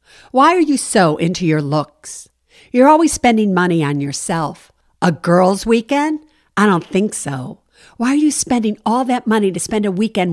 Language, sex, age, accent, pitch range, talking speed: English, female, 60-79, American, 175-230 Hz, 180 wpm